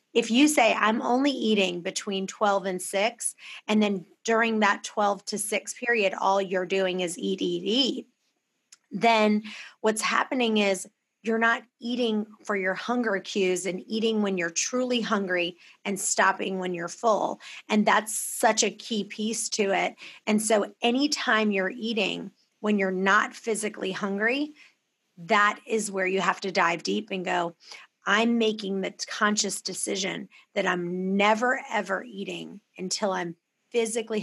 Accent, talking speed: American, 155 wpm